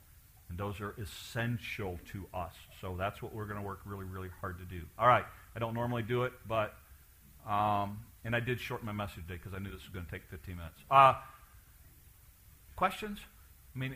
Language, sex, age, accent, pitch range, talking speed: English, male, 50-69, American, 95-145 Hz, 205 wpm